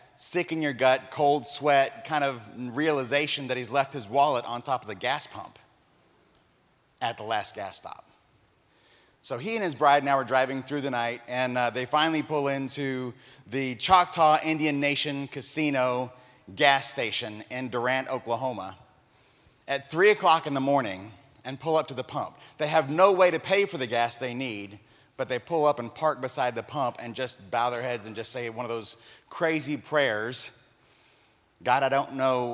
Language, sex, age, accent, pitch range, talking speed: English, male, 30-49, American, 120-150 Hz, 185 wpm